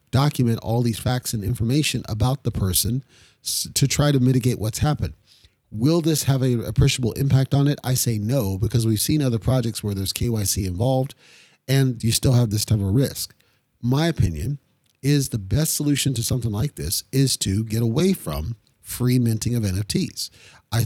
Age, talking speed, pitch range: 40-59, 180 wpm, 110-135 Hz